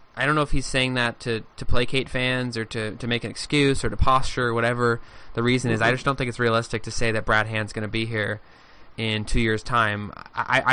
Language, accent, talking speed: English, American, 250 wpm